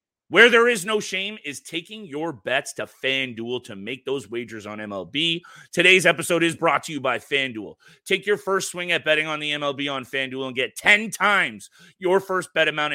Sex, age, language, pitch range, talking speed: male, 30-49, English, 140-185 Hz, 205 wpm